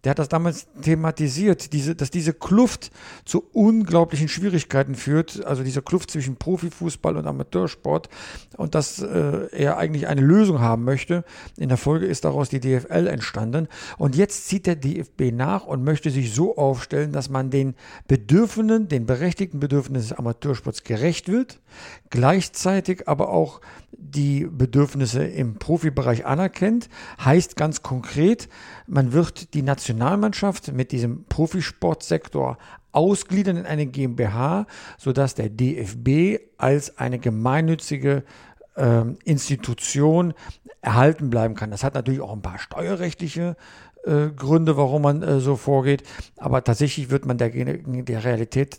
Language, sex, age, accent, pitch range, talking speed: German, male, 60-79, German, 130-165 Hz, 140 wpm